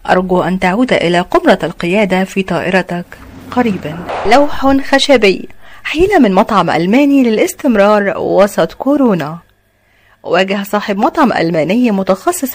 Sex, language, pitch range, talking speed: female, Arabic, 180-245 Hz, 110 wpm